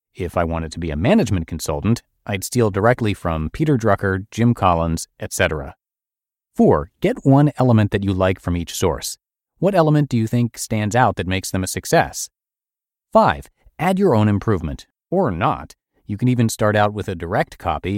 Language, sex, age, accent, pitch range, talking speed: English, male, 30-49, American, 90-130 Hz, 185 wpm